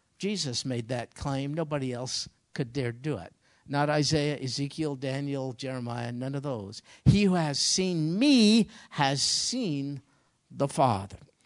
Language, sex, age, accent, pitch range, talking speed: English, male, 50-69, American, 155-230 Hz, 140 wpm